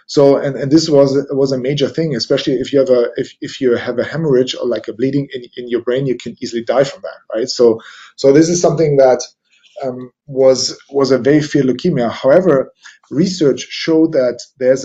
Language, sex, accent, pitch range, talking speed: English, male, German, 125-160 Hz, 215 wpm